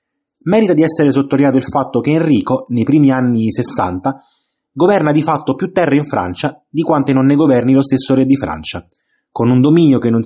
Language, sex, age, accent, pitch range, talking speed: Italian, male, 20-39, native, 125-155 Hz, 200 wpm